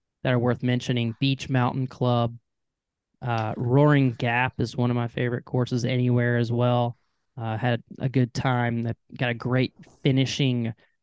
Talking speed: 150 wpm